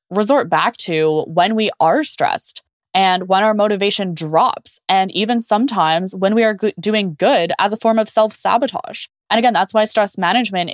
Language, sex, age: English, female, 10-29